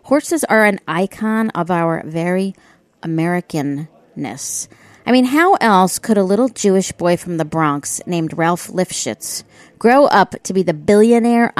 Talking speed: 150 wpm